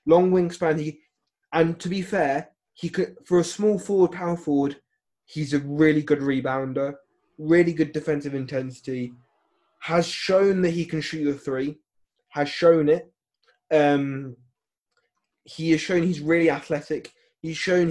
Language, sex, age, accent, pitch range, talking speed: English, male, 20-39, British, 145-175 Hz, 150 wpm